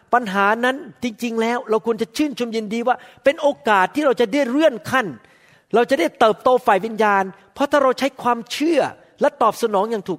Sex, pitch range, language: male, 175-240 Hz, Thai